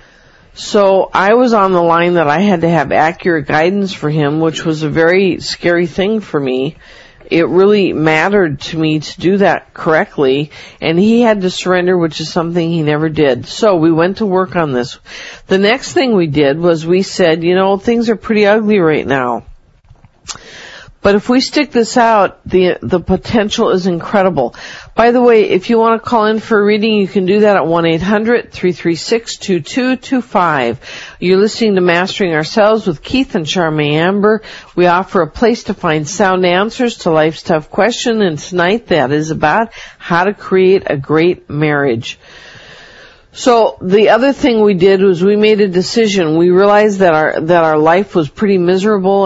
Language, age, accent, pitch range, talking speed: English, 50-69, American, 160-205 Hz, 180 wpm